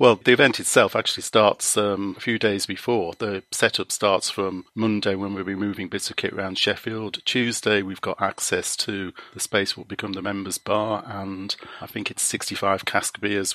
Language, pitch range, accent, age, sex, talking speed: English, 100-110 Hz, British, 40-59, male, 195 wpm